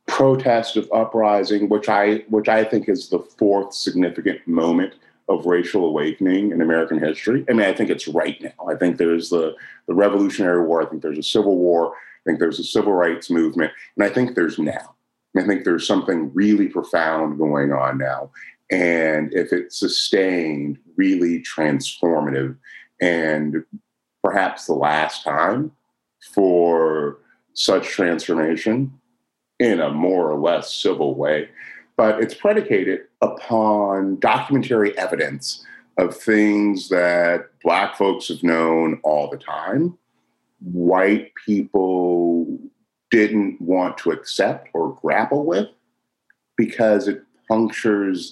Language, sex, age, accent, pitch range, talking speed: English, male, 40-59, American, 80-105 Hz, 135 wpm